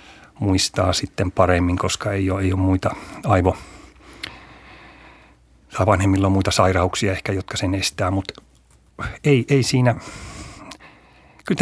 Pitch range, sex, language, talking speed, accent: 90-120 Hz, male, Finnish, 120 wpm, native